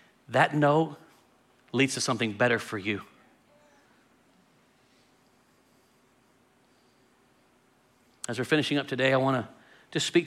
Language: English